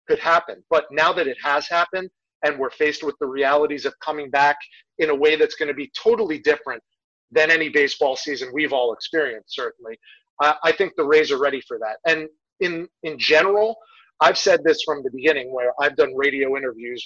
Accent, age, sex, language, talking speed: American, 30-49, male, English, 195 wpm